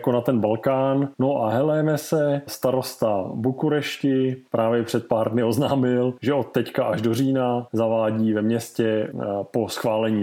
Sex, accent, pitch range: male, native, 110-130 Hz